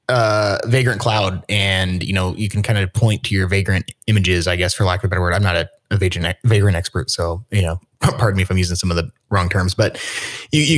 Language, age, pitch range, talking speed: English, 20-39, 95-125 Hz, 255 wpm